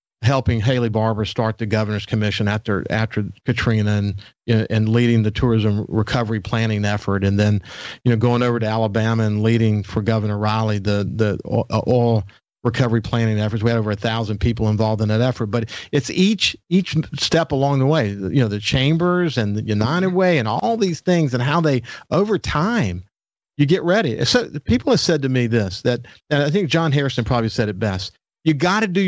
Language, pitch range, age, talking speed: English, 110-150 Hz, 50-69, 200 wpm